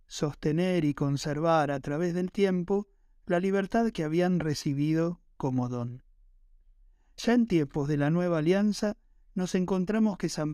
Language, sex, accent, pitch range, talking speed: Spanish, male, Argentinian, 150-195 Hz, 140 wpm